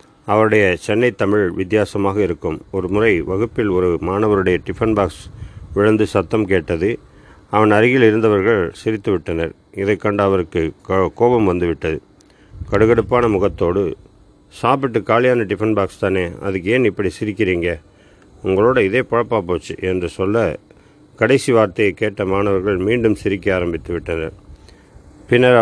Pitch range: 95-110 Hz